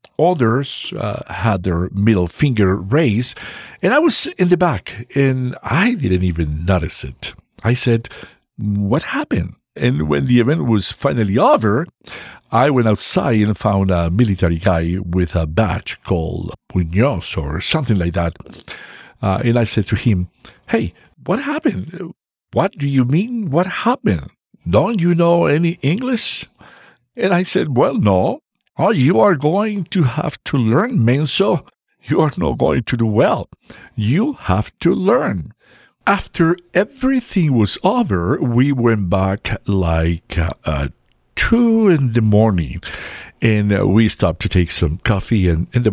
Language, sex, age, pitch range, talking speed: English, male, 60-79, 95-150 Hz, 150 wpm